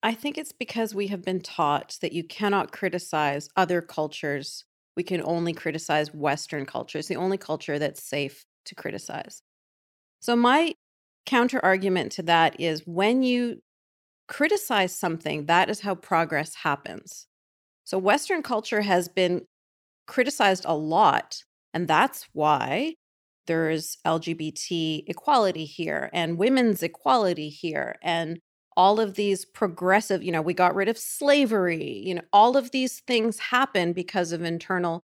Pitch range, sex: 165-230 Hz, female